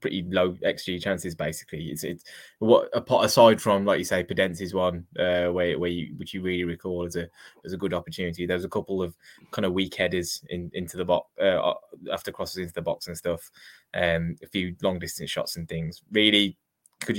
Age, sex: 10-29, male